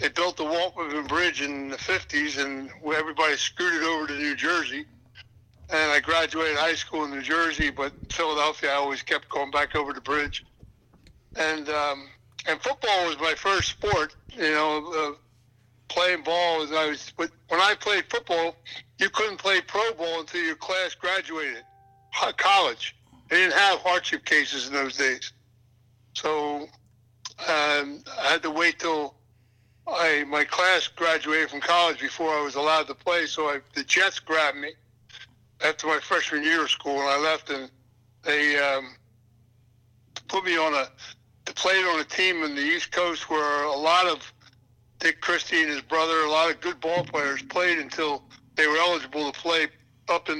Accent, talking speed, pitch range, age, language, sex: American, 175 wpm, 130-165 Hz, 60-79, English, male